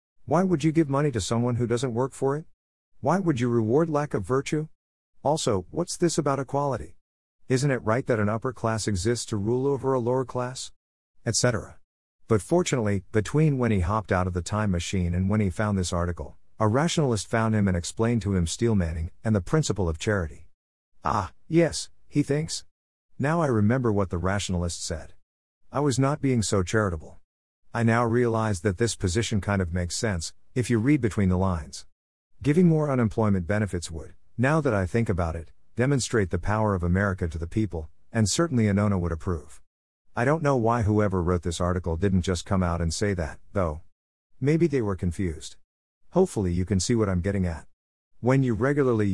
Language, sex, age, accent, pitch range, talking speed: English, male, 50-69, American, 90-125 Hz, 195 wpm